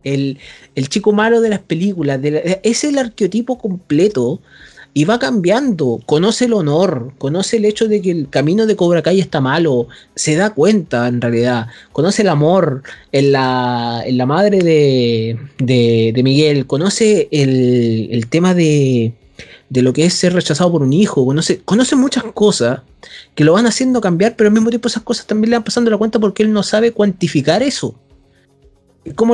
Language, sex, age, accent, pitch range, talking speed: Spanish, male, 30-49, Argentinian, 145-210 Hz, 175 wpm